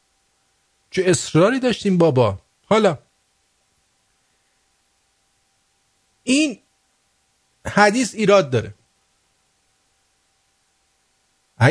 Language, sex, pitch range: English, male, 115-150 Hz